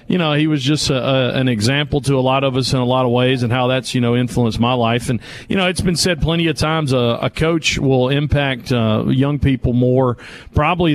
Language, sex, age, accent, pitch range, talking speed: English, male, 40-59, American, 130-170 Hz, 250 wpm